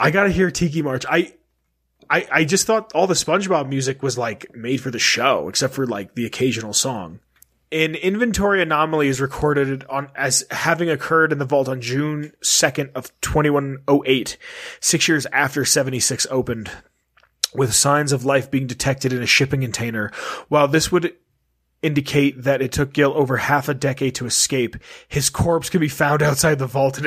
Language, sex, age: English, male, 30-49